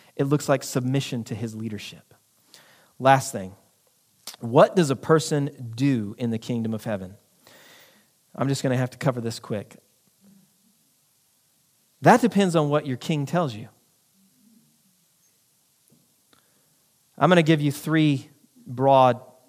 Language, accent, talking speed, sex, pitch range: English, American, 130 wpm, male, 125-180 Hz